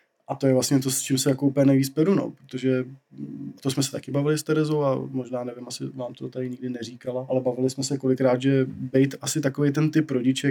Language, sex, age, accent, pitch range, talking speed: Czech, male, 20-39, native, 120-130 Hz, 235 wpm